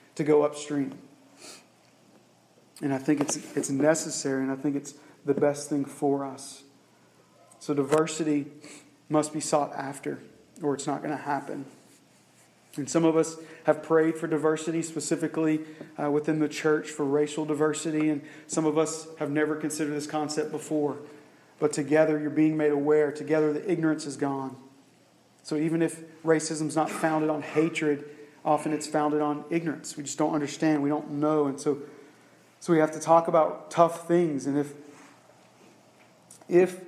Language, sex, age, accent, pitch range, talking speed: English, male, 40-59, American, 145-160 Hz, 165 wpm